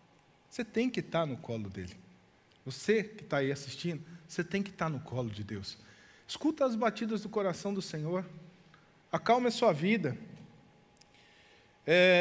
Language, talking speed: Portuguese, 155 wpm